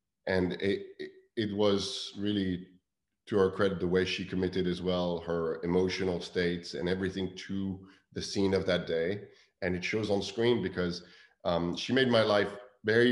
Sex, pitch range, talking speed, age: male, 90-105 Hz, 175 wpm, 30-49